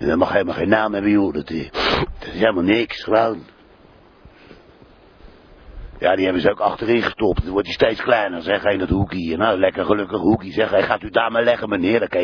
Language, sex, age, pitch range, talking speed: Dutch, male, 60-79, 90-105 Hz, 215 wpm